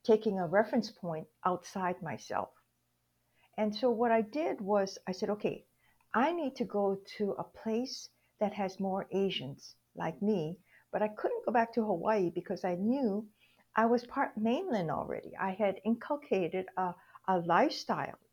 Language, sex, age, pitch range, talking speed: English, female, 60-79, 180-220 Hz, 160 wpm